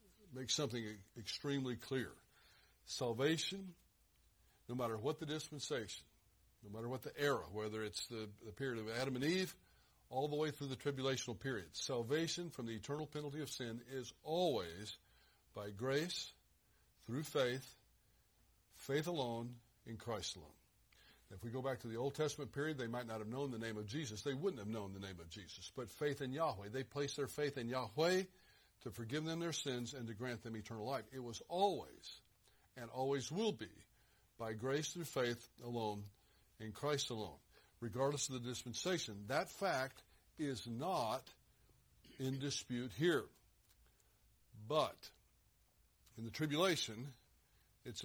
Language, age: English, 60-79